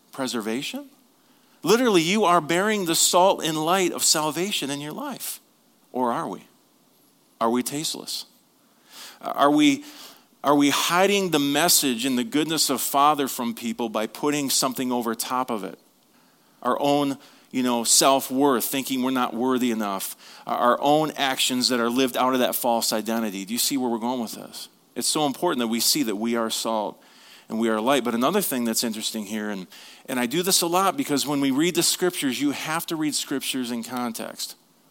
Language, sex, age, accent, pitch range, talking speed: English, male, 40-59, American, 125-180 Hz, 190 wpm